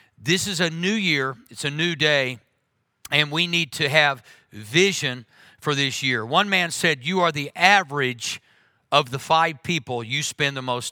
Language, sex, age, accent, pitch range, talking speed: English, male, 50-69, American, 135-175 Hz, 180 wpm